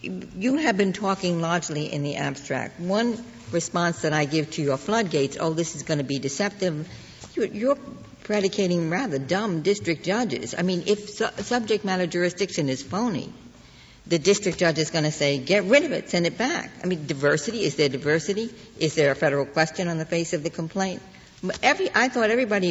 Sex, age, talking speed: female, 60-79, 195 wpm